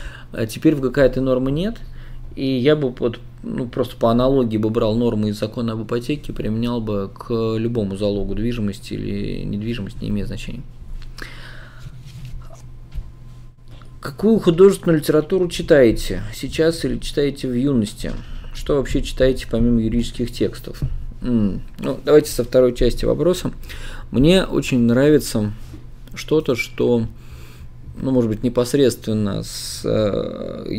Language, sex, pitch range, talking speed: Russian, male, 110-130 Hz, 125 wpm